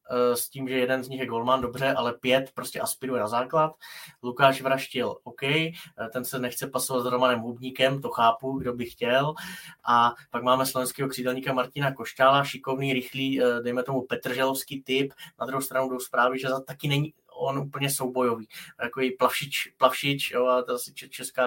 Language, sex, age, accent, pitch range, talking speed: Czech, male, 20-39, native, 120-130 Hz, 170 wpm